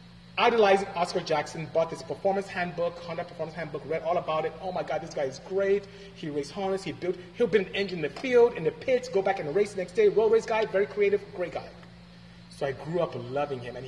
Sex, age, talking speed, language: male, 30-49, 250 wpm, English